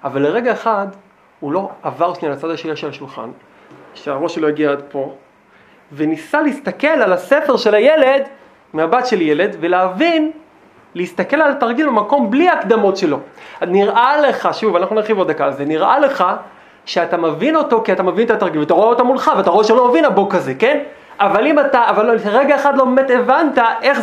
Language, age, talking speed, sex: Hebrew, 30-49, 180 wpm, male